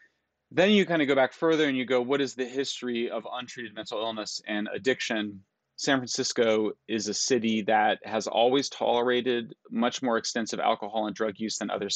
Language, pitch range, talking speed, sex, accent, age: English, 110-130 Hz, 190 wpm, male, American, 30-49